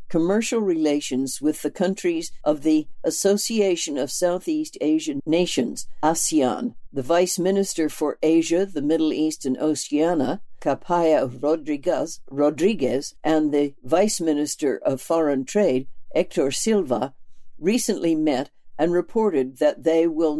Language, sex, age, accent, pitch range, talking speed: English, female, 60-79, American, 150-190 Hz, 120 wpm